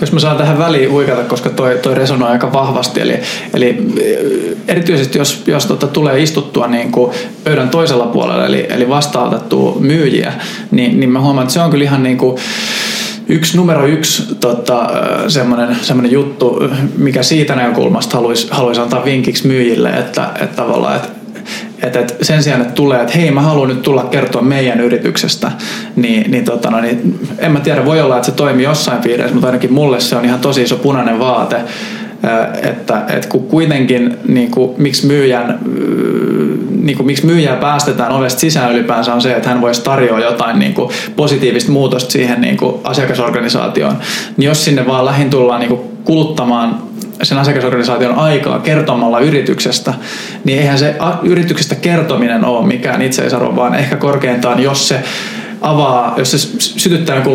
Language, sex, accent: Finnish, male, native